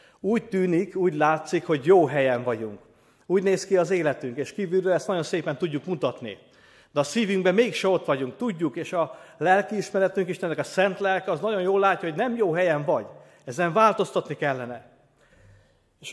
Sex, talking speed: male, 175 wpm